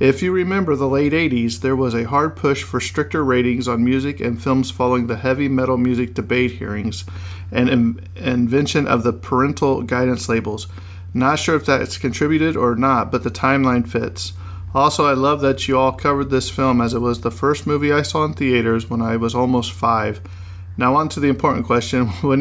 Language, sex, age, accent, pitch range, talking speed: English, male, 40-59, American, 115-135 Hz, 200 wpm